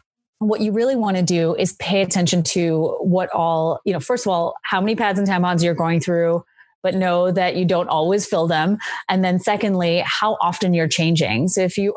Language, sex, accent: English, female, American